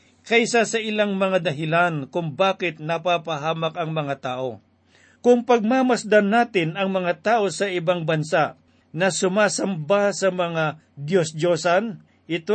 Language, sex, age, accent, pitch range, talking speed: Filipino, male, 50-69, native, 160-195 Hz, 125 wpm